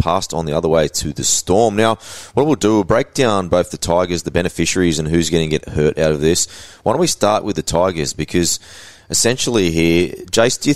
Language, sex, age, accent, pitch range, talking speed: English, male, 20-39, Australian, 80-105 Hz, 235 wpm